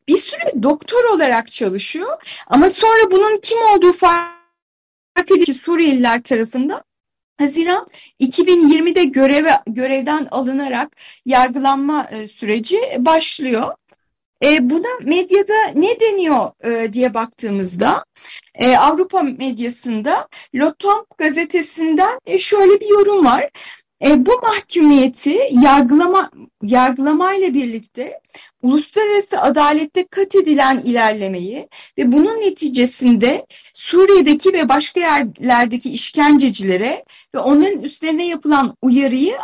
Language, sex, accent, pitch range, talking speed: Turkish, female, native, 255-360 Hz, 100 wpm